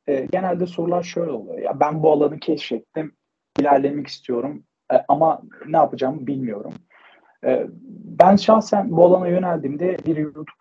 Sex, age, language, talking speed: male, 40-59, Turkish, 125 wpm